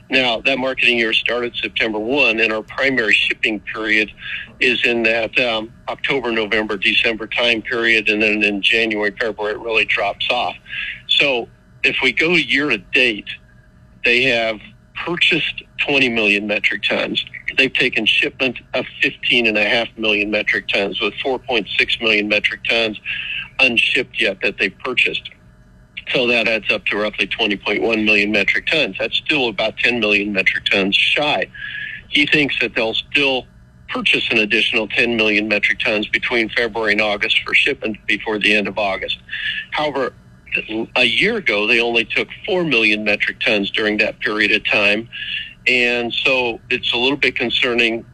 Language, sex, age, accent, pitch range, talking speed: English, male, 50-69, American, 105-120 Hz, 155 wpm